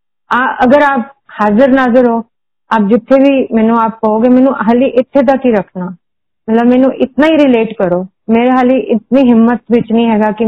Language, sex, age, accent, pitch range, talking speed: Hindi, female, 30-49, native, 210-255 Hz, 190 wpm